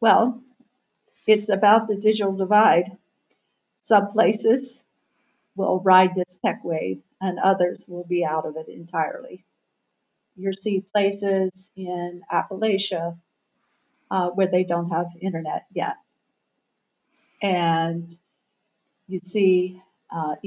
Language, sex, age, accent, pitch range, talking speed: English, female, 50-69, American, 180-215 Hz, 110 wpm